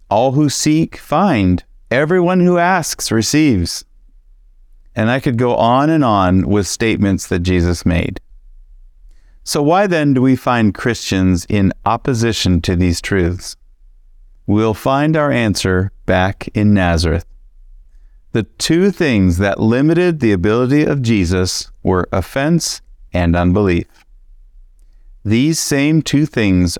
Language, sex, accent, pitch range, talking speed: English, male, American, 90-125 Hz, 125 wpm